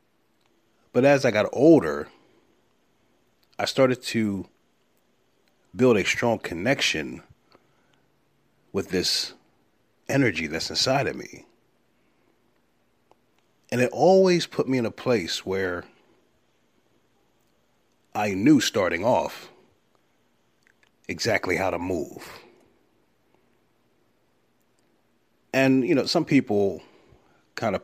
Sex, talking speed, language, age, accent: male, 95 wpm, English, 40-59, American